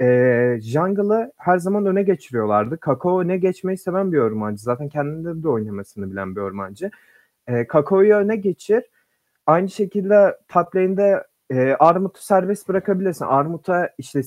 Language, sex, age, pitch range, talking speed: Turkish, male, 30-49, 140-195 Hz, 135 wpm